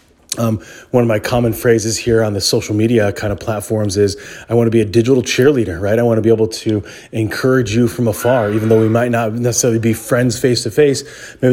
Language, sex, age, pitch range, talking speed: English, male, 30-49, 115-140 Hz, 225 wpm